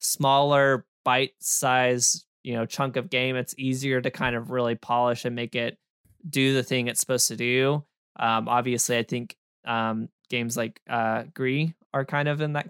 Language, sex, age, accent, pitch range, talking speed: English, male, 20-39, American, 120-140 Hz, 185 wpm